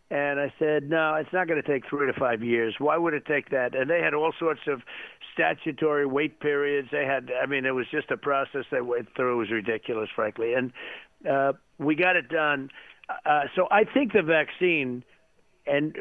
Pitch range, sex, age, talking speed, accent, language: 140-175 Hz, male, 50-69, 210 wpm, American, English